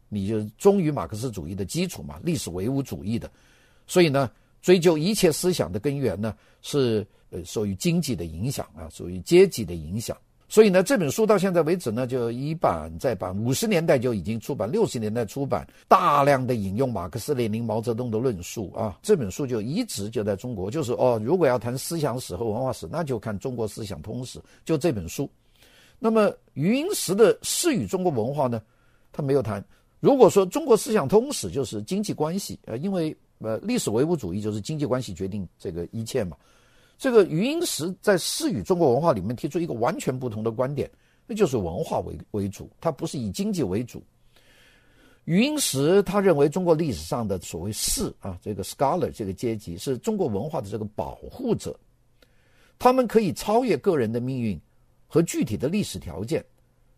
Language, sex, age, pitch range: Chinese, male, 50-69, 110-175 Hz